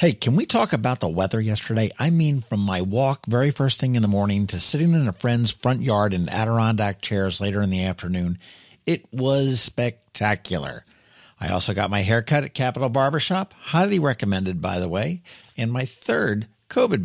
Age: 50-69